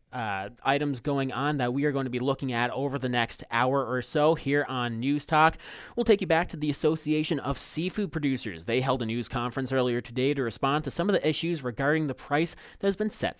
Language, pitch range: English, 115-150 Hz